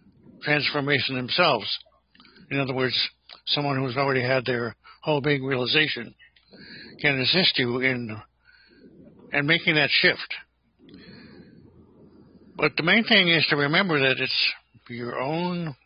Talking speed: 120 wpm